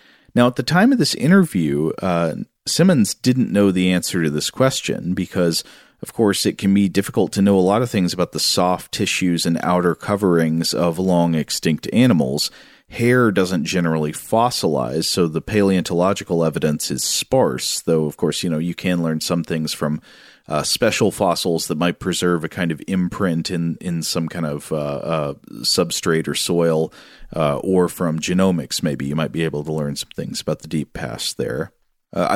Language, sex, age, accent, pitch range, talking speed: English, male, 40-59, American, 80-100 Hz, 185 wpm